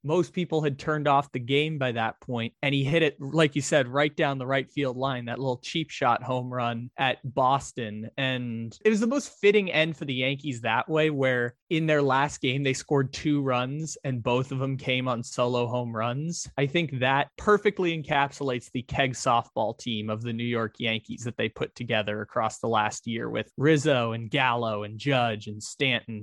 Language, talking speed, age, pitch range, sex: English, 210 wpm, 20-39, 120-150 Hz, male